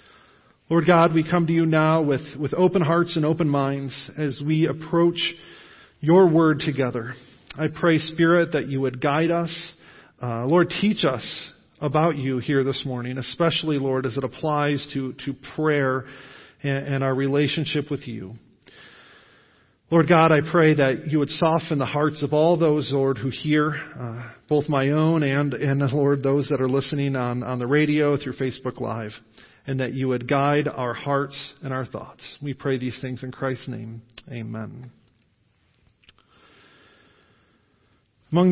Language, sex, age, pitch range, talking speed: English, male, 40-59, 130-160 Hz, 160 wpm